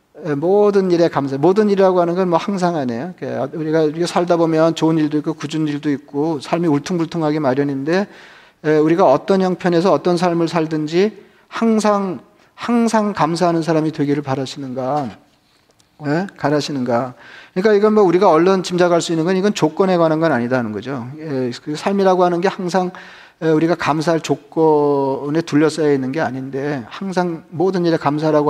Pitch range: 145-180 Hz